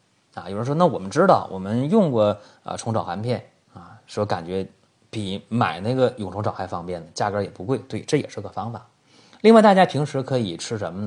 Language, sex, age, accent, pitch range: Chinese, male, 30-49, native, 105-155 Hz